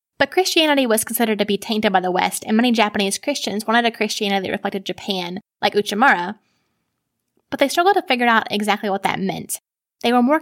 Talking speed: 200 wpm